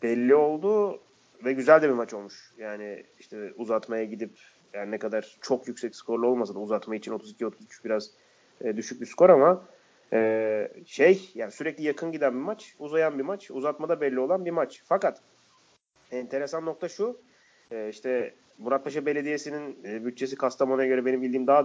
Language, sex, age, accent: Turkish, male, 30-49, native